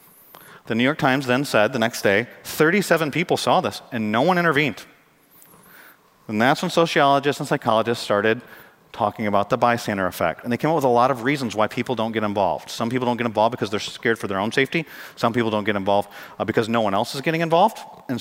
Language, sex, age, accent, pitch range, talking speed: English, male, 40-59, American, 110-150 Hz, 225 wpm